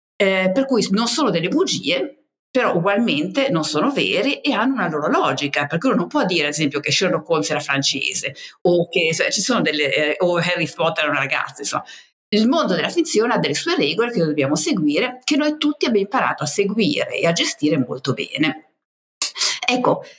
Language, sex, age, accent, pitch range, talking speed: Italian, female, 50-69, native, 150-215 Hz, 200 wpm